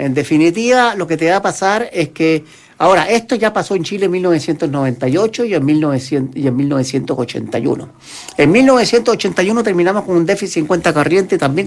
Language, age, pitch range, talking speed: Spanish, 50-69, 125-190 Hz, 175 wpm